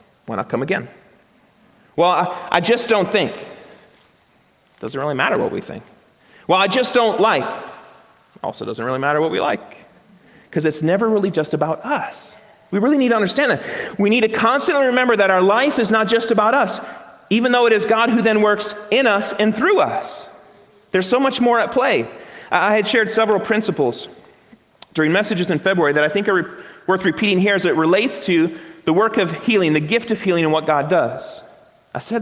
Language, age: English, 40-59